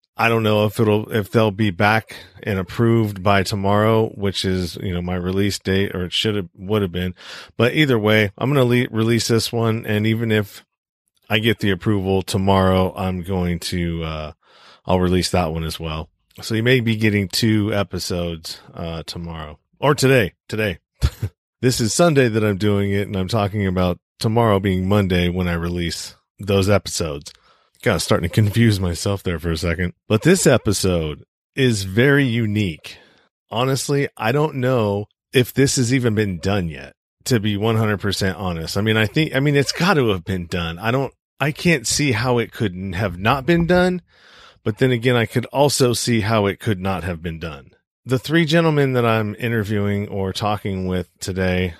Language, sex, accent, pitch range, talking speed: English, male, American, 90-115 Hz, 190 wpm